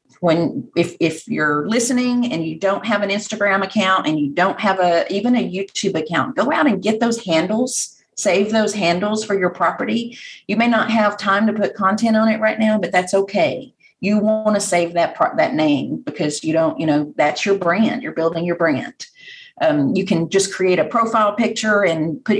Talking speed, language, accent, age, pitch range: 205 wpm, English, American, 40-59, 165-215 Hz